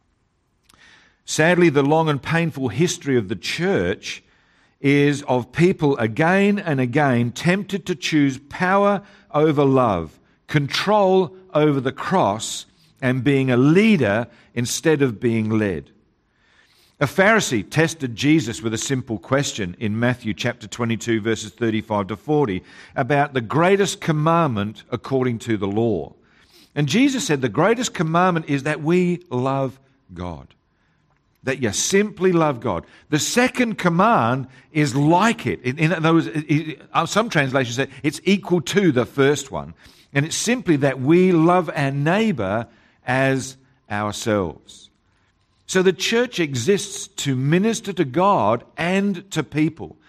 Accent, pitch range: Australian, 120-170 Hz